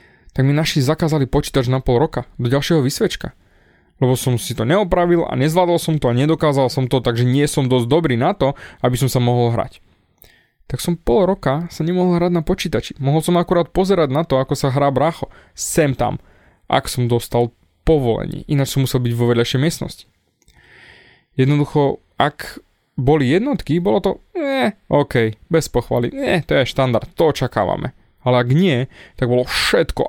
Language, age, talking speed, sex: Slovak, 20-39, 180 wpm, male